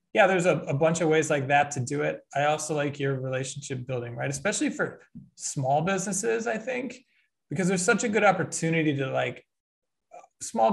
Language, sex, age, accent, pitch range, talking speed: English, male, 20-39, American, 130-165 Hz, 190 wpm